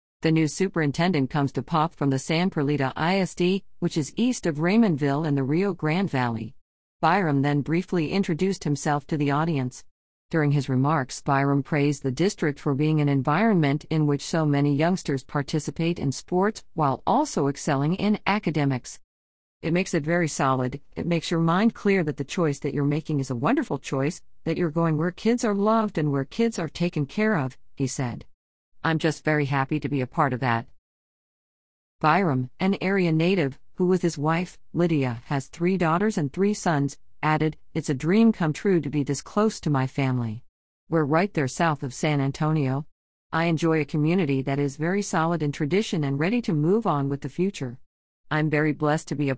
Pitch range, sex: 140-175 Hz, female